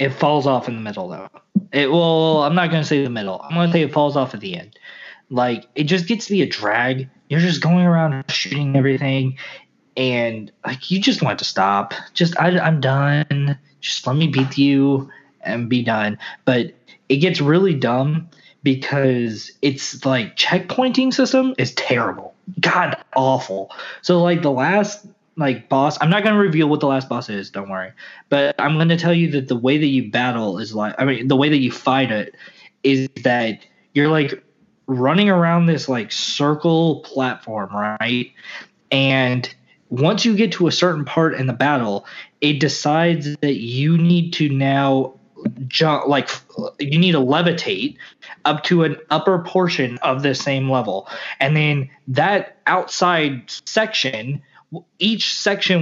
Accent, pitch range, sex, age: American, 130-175 Hz, male, 20-39